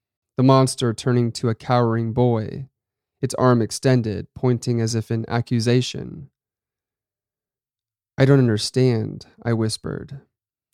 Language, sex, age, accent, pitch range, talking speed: English, male, 30-49, American, 115-135 Hz, 110 wpm